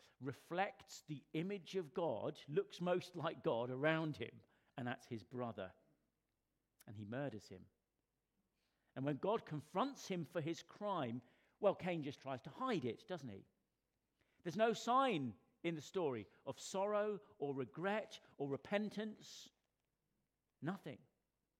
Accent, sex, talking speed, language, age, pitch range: British, male, 135 wpm, English, 50-69, 120-180 Hz